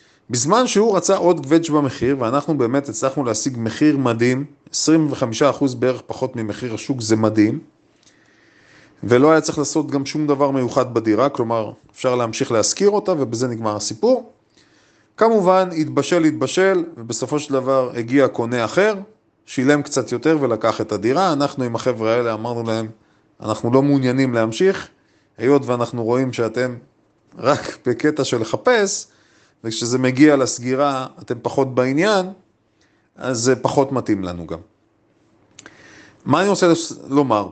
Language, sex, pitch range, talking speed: Hebrew, male, 120-155 Hz, 135 wpm